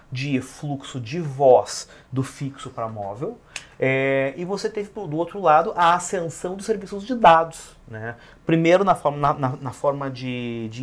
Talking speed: 165 wpm